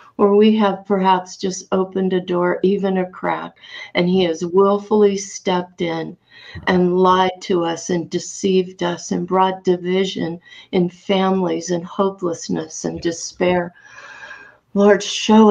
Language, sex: English, female